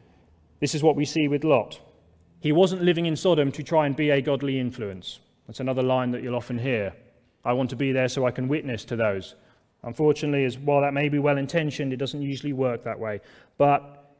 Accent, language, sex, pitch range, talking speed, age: British, English, male, 120-145 Hz, 215 wpm, 30-49